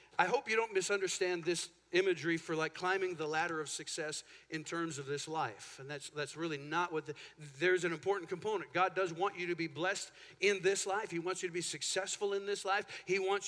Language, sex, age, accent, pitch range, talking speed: English, male, 50-69, American, 175-210 Hz, 225 wpm